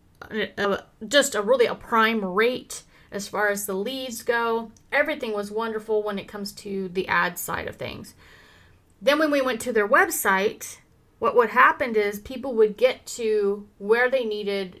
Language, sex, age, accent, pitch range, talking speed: English, female, 30-49, American, 205-260 Hz, 175 wpm